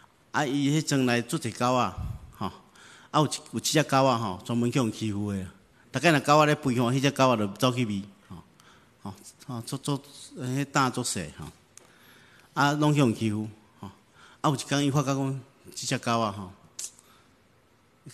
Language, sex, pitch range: Chinese, male, 105-130 Hz